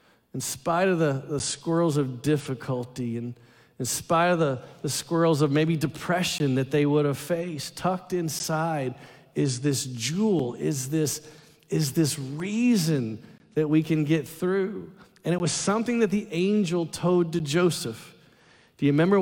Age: 40-59